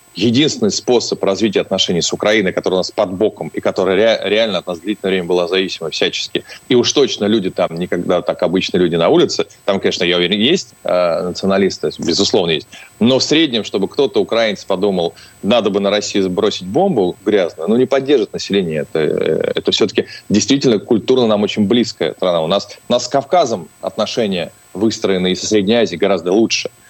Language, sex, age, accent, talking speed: Russian, male, 30-49, native, 180 wpm